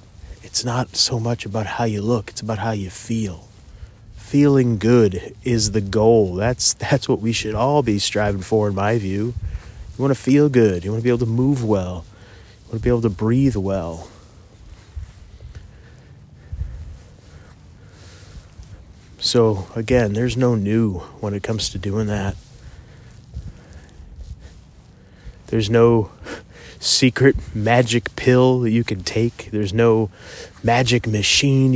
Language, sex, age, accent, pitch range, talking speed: English, male, 30-49, American, 95-115 Hz, 140 wpm